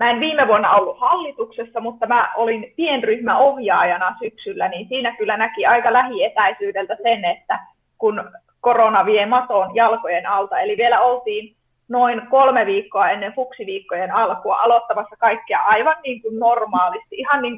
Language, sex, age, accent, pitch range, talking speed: Finnish, female, 20-39, native, 215-270 Hz, 145 wpm